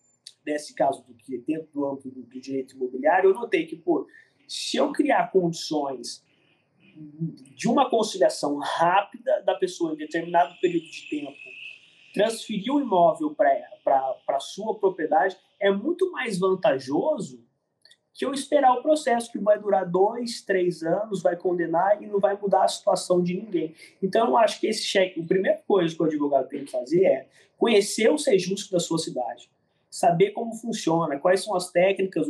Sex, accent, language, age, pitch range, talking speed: male, Brazilian, Portuguese, 20-39, 155-230 Hz, 170 wpm